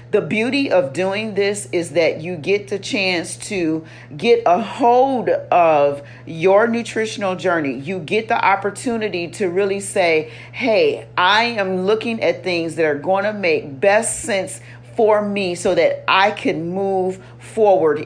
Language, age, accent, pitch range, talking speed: English, 40-59, American, 160-215 Hz, 155 wpm